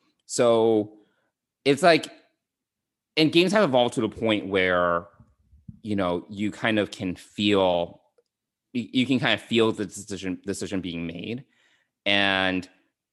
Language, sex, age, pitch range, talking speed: English, male, 20-39, 90-115 Hz, 135 wpm